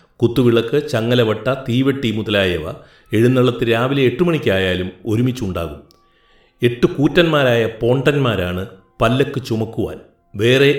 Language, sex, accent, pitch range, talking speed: Malayalam, male, native, 105-130 Hz, 85 wpm